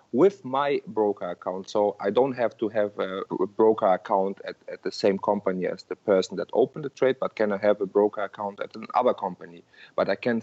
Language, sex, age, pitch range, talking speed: English, male, 30-49, 100-120 Hz, 220 wpm